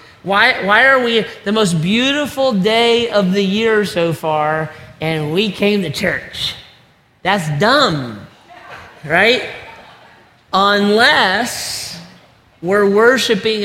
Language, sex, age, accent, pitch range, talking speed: English, male, 40-59, American, 160-205 Hz, 105 wpm